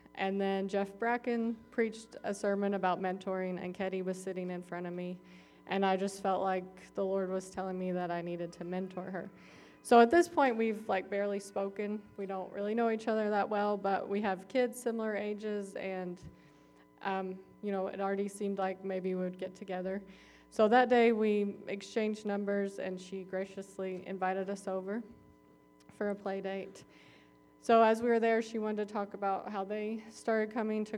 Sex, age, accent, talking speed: female, 20-39, American, 190 wpm